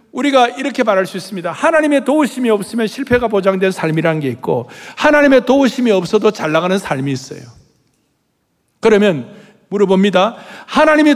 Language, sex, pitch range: Korean, male, 180-255 Hz